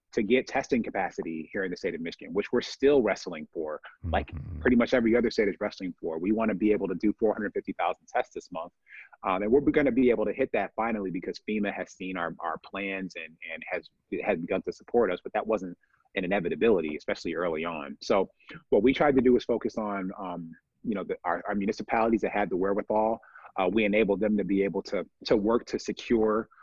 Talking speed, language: 225 wpm, English